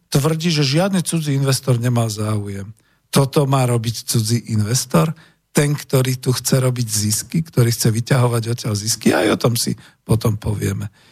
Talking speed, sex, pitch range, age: 160 wpm, male, 120-155 Hz, 50-69